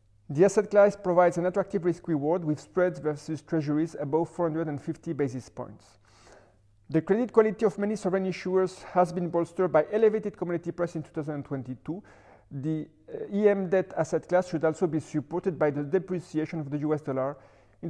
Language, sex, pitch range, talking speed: French, male, 150-190 Hz, 170 wpm